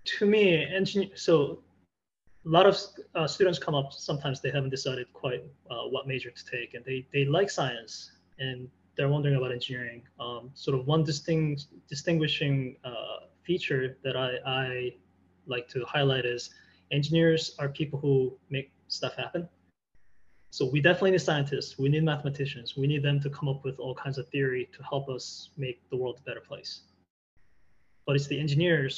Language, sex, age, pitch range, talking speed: English, male, 20-39, 125-150 Hz, 175 wpm